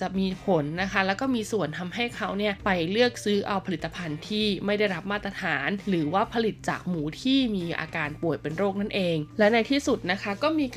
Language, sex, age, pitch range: Thai, female, 20-39, 190-245 Hz